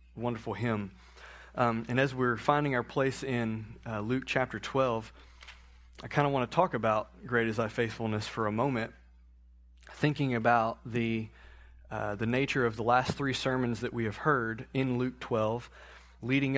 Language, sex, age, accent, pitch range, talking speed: English, male, 20-39, American, 105-130 Hz, 170 wpm